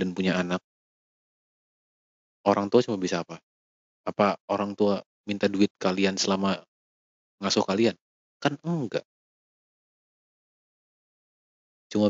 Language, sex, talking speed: Indonesian, male, 100 wpm